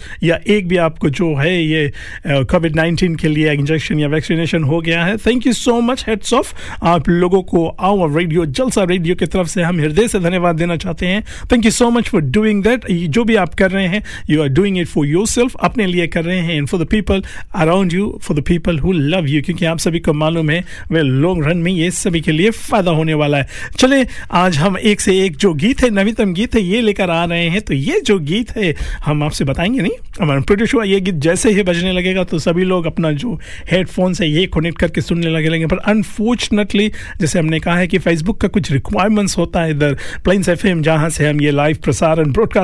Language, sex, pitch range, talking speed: Hindi, male, 165-205 Hz, 170 wpm